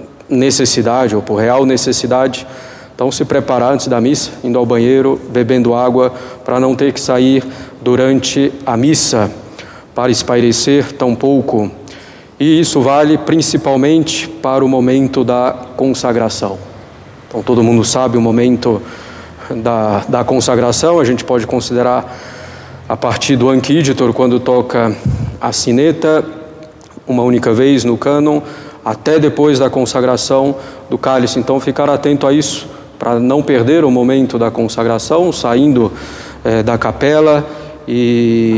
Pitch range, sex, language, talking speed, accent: 120-140 Hz, male, Portuguese, 135 wpm, Brazilian